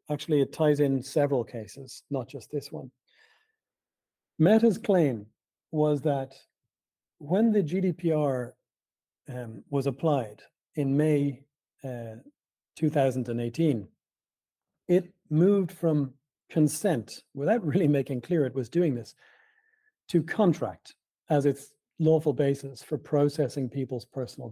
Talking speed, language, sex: 115 wpm, English, male